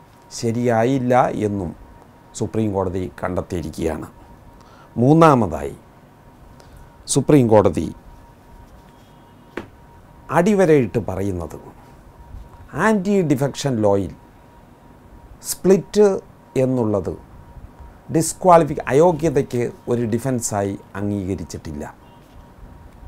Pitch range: 100-135 Hz